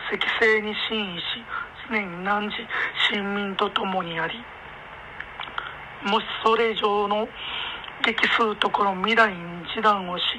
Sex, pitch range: male, 195-225 Hz